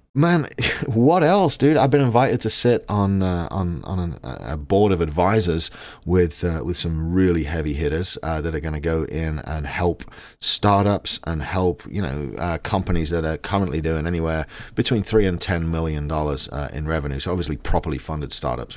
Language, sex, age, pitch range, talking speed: English, male, 40-59, 80-105 Hz, 190 wpm